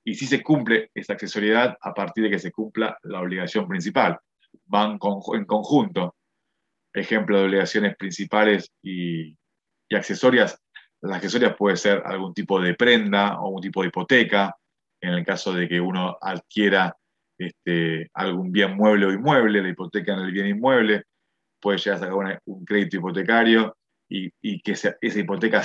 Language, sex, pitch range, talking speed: Spanish, male, 95-110 Hz, 170 wpm